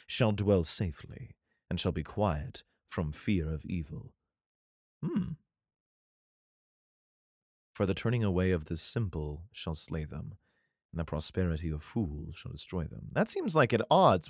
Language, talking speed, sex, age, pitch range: English, 145 wpm, male, 30-49, 80-105 Hz